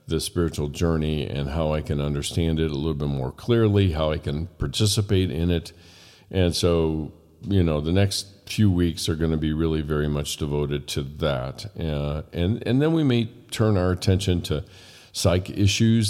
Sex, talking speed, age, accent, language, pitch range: male, 185 wpm, 50-69, American, English, 75-100 Hz